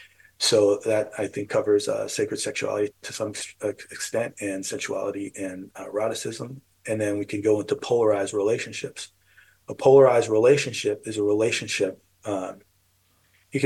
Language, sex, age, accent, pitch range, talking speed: English, male, 30-49, American, 105-145 Hz, 130 wpm